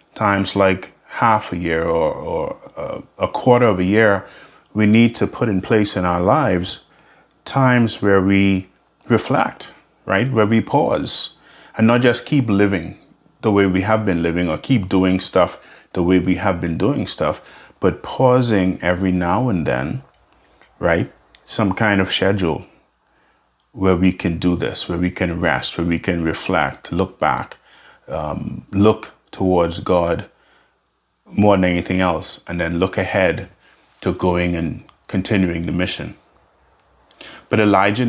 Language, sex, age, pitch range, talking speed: English, male, 30-49, 90-105 Hz, 155 wpm